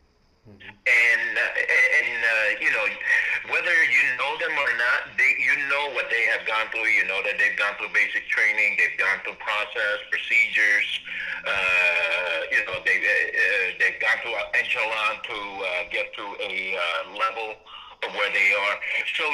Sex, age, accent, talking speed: male, 50-69, American, 175 wpm